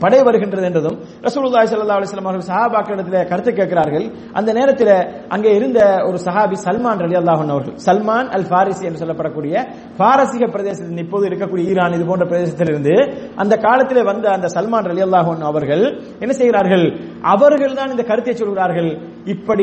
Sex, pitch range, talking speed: male, 180-230 Hz, 185 wpm